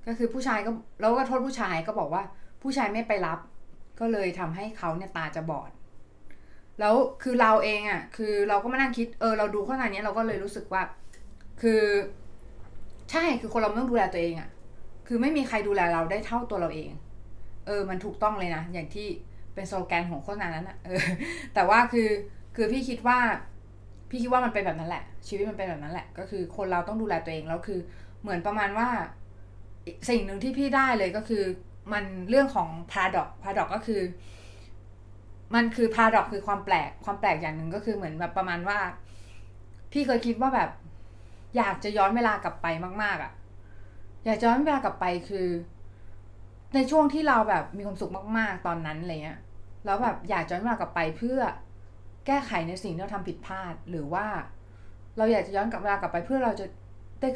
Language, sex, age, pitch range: Thai, female, 20-39, 150-220 Hz